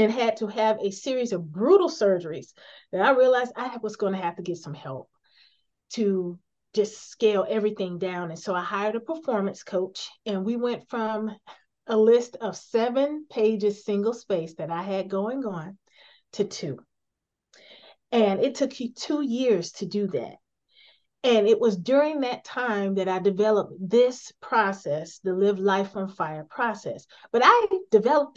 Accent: American